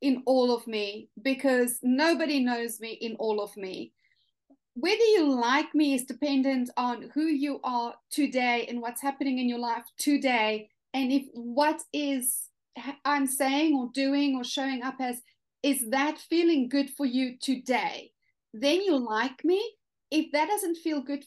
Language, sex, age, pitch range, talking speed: English, female, 30-49, 245-295 Hz, 165 wpm